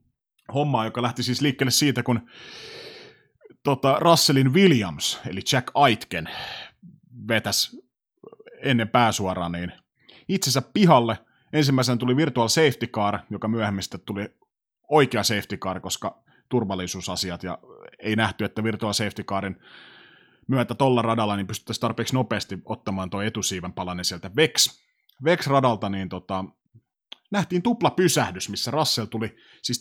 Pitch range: 105-145 Hz